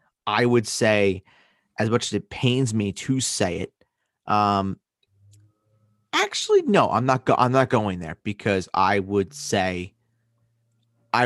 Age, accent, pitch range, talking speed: 30-49, American, 95-115 Hz, 145 wpm